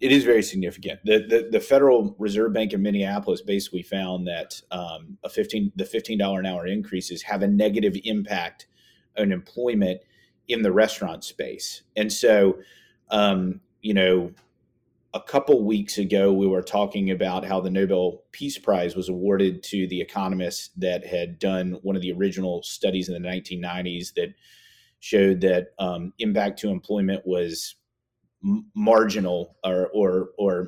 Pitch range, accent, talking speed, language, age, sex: 95-110 Hz, American, 160 wpm, English, 30-49, male